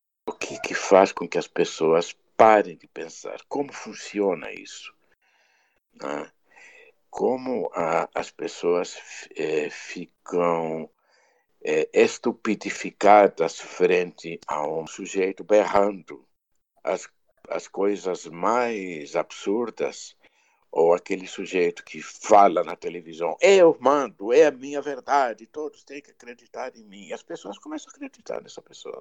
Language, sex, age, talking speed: Portuguese, male, 60-79, 110 wpm